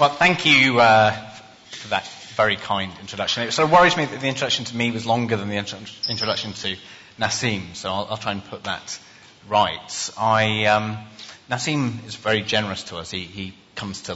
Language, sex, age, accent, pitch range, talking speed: English, male, 30-49, British, 100-130 Hz, 195 wpm